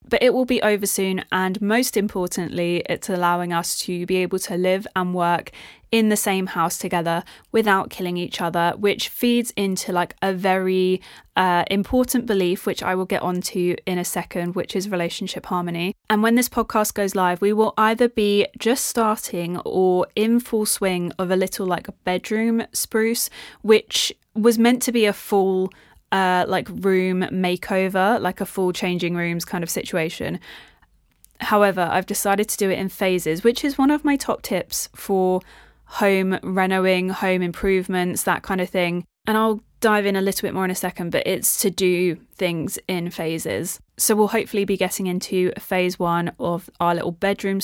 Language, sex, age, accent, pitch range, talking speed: English, female, 20-39, British, 180-210 Hz, 185 wpm